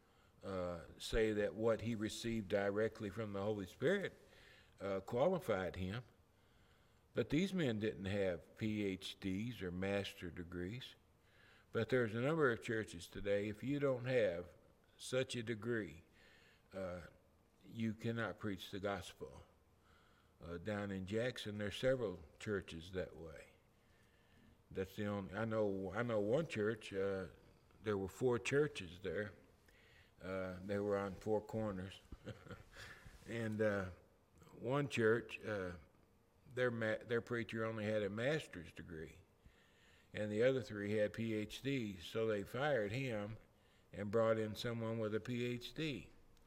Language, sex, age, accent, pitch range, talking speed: English, male, 60-79, American, 95-115 Hz, 135 wpm